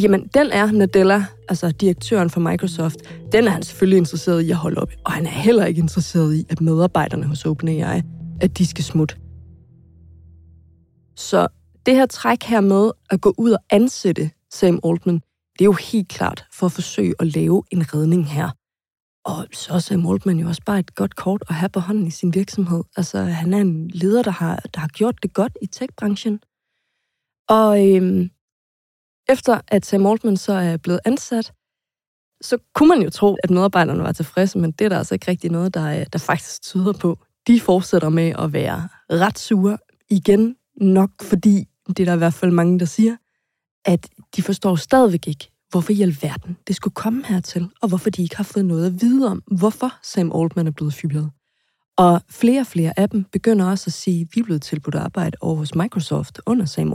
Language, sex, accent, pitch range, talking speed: Danish, female, native, 165-205 Hz, 200 wpm